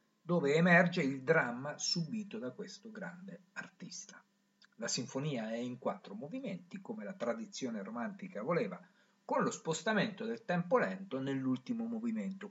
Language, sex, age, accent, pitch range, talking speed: Italian, male, 50-69, native, 165-215 Hz, 135 wpm